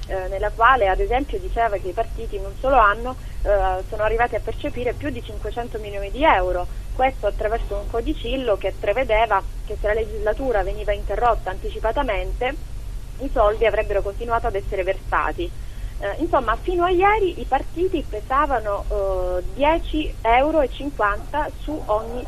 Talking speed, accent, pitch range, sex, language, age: 155 wpm, native, 200-265 Hz, female, Italian, 30-49